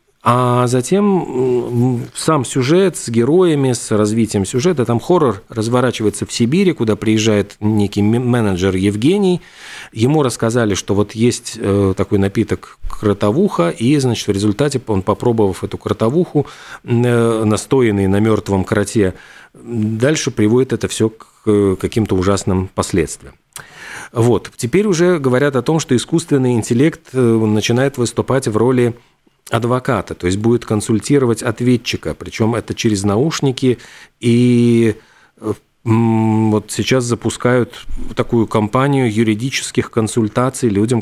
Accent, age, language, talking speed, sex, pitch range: native, 40-59, Russian, 115 wpm, male, 105-125 Hz